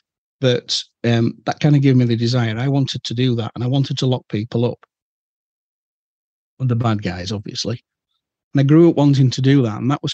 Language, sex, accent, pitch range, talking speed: English, male, British, 115-130 Hz, 220 wpm